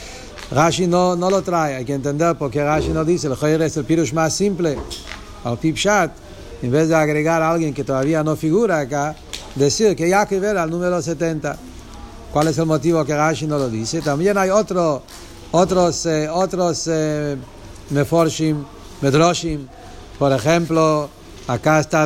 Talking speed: 170 wpm